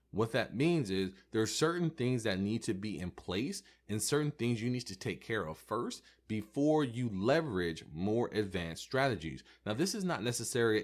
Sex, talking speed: male, 195 wpm